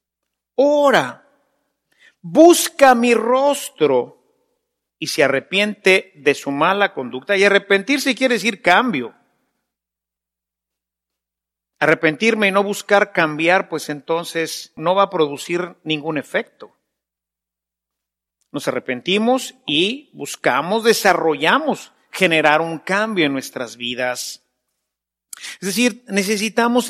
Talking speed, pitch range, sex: 95 wpm, 160-250 Hz, male